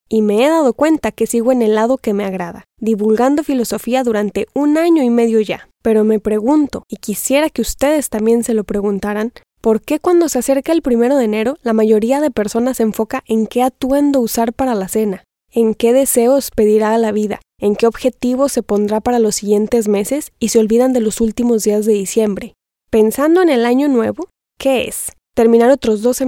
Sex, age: female, 10-29